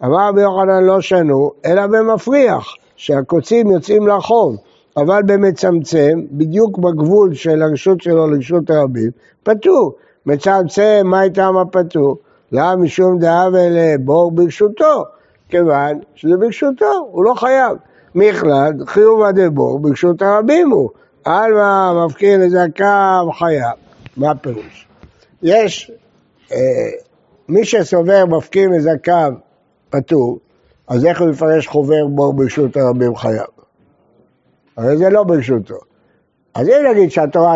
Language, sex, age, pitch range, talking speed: Hebrew, male, 60-79, 145-205 Hz, 115 wpm